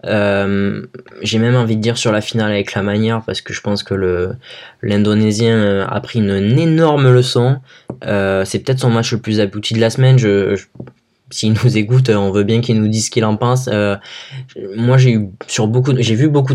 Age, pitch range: 20-39, 100-120 Hz